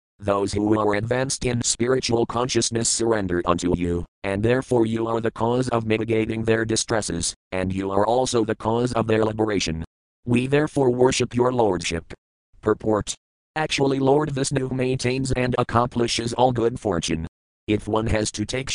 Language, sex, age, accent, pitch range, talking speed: English, male, 50-69, American, 100-120 Hz, 155 wpm